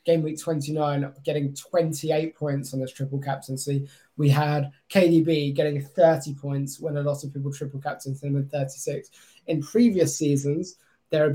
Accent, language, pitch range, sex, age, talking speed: British, English, 150-190 Hz, male, 20-39, 165 wpm